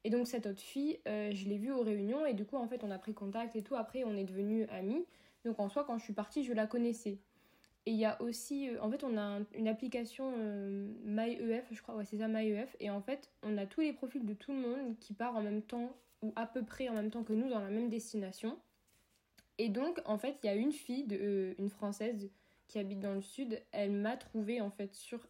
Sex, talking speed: female, 265 wpm